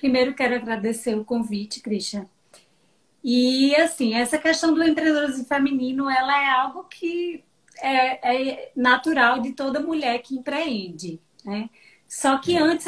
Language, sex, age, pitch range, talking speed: Portuguese, female, 20-39, 220-270 Hz, 135 wpm